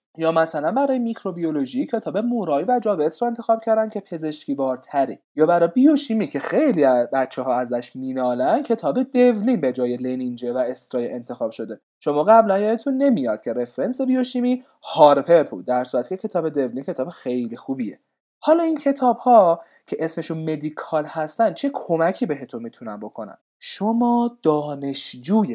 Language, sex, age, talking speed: Persian, male, 30-49, 150 wpm